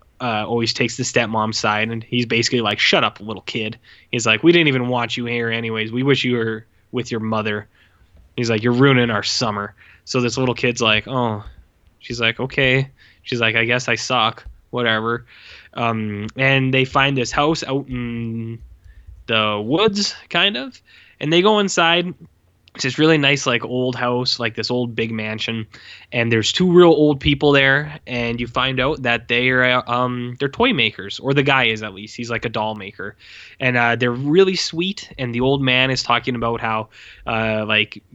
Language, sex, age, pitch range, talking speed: English, male, 10-29, 110-135 Hz, 195 wpm